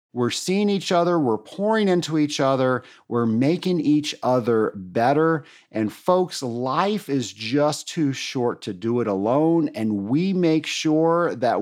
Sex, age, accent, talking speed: male, 50-69, American, 155 wpm